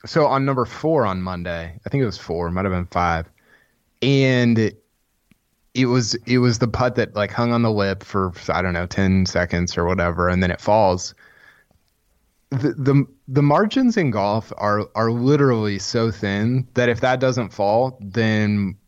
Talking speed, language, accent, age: 180 wpm, English, American, 20-39